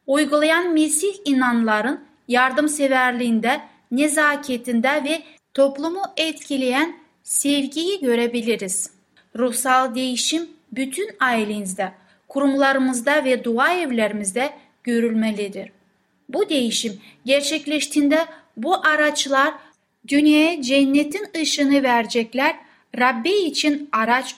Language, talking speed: Turkish, 75 wpm